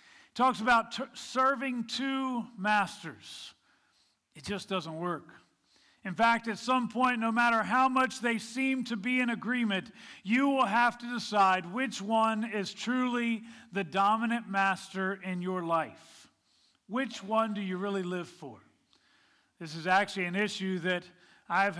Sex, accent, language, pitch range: male, American, English, 185-225 Hz